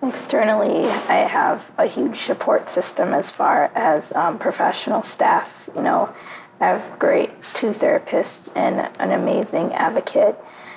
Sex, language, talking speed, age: female, English, 135 wpm, 20-39